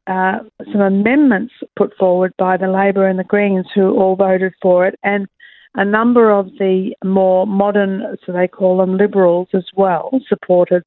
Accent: Australian